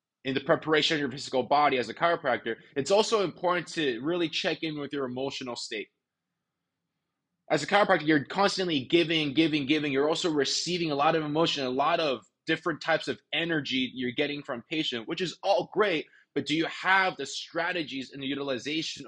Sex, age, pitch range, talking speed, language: male, 20-39, 135-165 Hz, 190 wpm, English